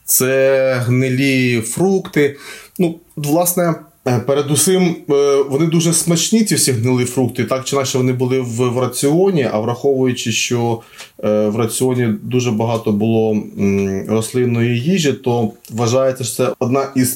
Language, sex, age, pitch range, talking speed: Ukrainian, male, 20-39, 120-155 Hz, 125 wpm